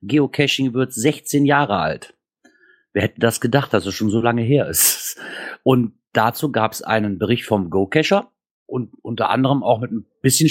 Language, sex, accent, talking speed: German, male, German, 175 wpm